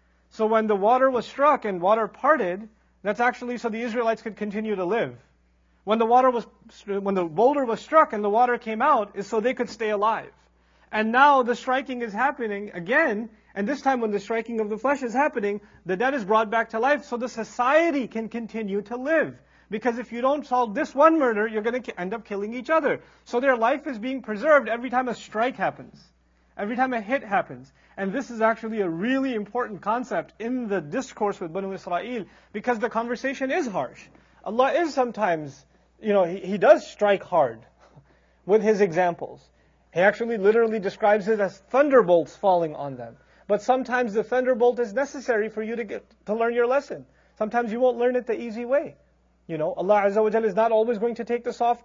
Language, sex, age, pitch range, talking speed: English, male, 30-49, 210-250 Hz, 205 wpm